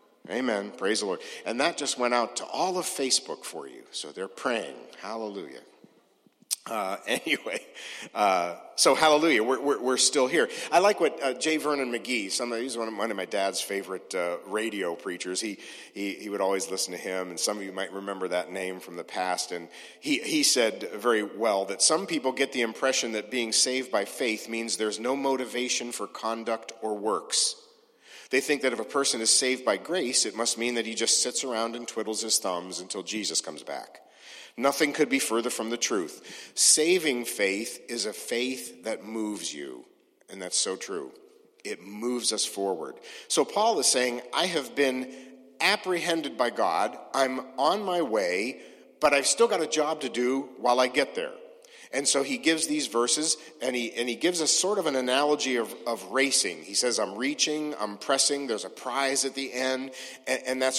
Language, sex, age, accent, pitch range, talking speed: English, male, 50-69, American, 115-160 Hz, 200 wpm